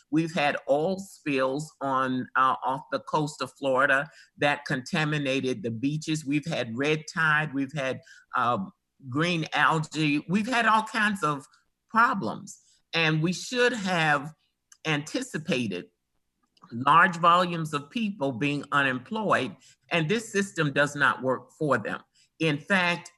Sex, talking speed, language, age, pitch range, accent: male, 130 wpm, English, 50-69, 135-170 Hz, American